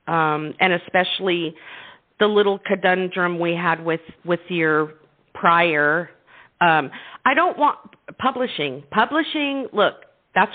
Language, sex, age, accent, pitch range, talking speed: English, female, 50-69, American, 170-220 Hz, 115 wpm